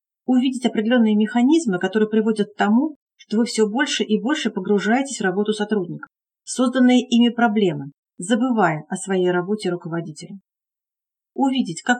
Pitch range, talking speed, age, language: 190-245 Hz, 135 wpm, 40-59, Russian